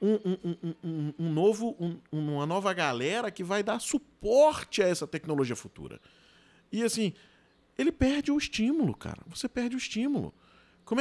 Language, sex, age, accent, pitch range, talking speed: Portuguese, male, 40-59, Brazilian, 125-205 Hz, 165 wpm